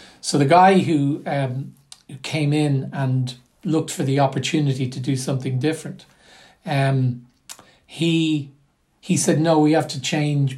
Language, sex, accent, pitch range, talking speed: English, male, Irish, 130-155 Hz, 140 wpm